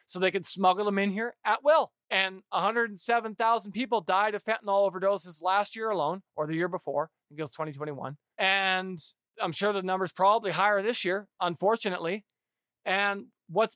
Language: English